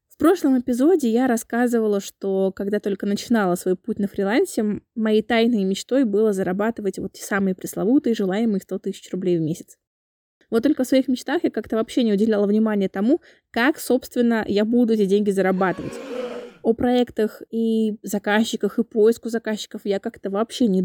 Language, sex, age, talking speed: Russian, female, 20-39, 165 wpm